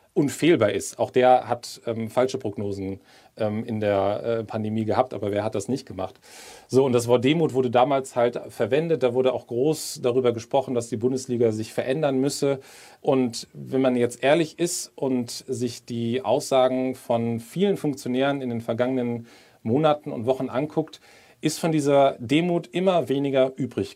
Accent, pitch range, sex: German, 115-135 Hz, male